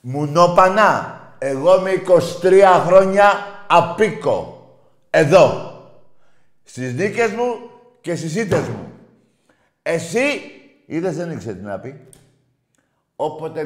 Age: 50-69